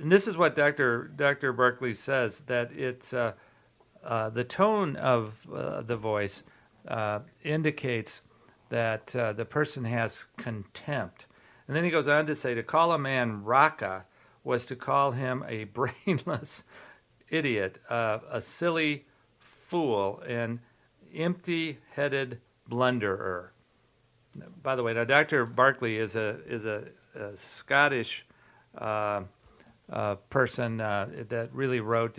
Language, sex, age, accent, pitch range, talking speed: English, male, 50-69, American, 110-130 Hz, 130 wpm